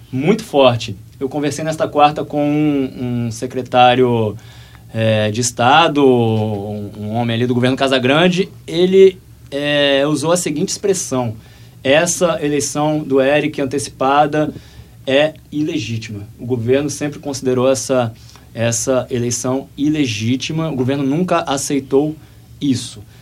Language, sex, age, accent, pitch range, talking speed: Portuguese, male, 20-39, Brazilian, 120-145 Hz, 120 wpm